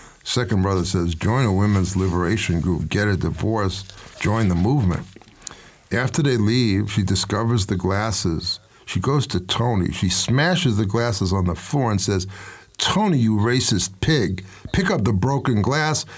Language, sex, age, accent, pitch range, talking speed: English, male, 50-69, American, 105-145 Hz, 160 wpm